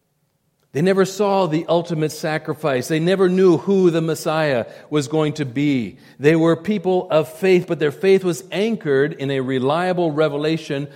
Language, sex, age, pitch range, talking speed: English, male, 40-59, 135-175 Hz, 165 wpm